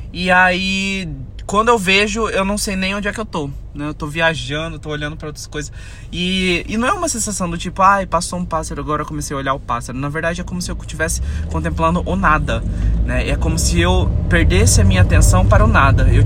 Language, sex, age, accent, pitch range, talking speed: Portuguese, male, 20-39, Brazilian, 95-140 Hz, 245 wpm